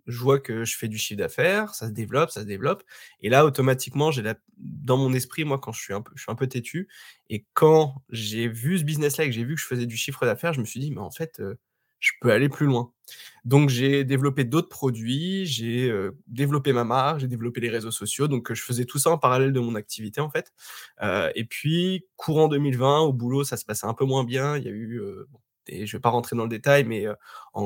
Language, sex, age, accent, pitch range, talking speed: French, male, 20-39, French, 115-140 Hz, 260 wpm